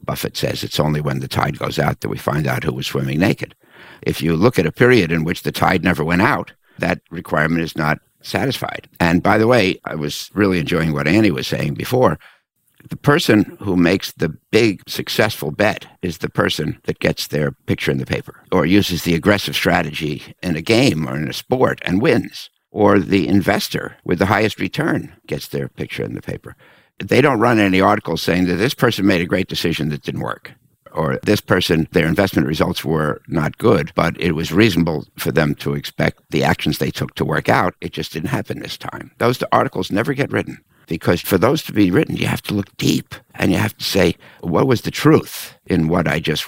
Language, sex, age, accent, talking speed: English, male, 60-79, American, 215 wpm